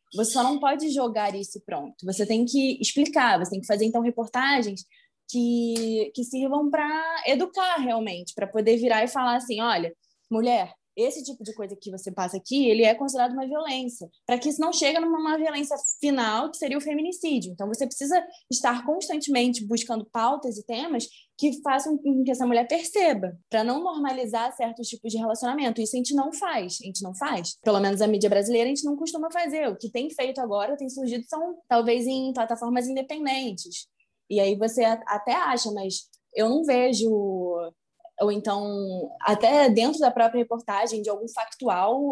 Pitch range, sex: 215-270 Hz, female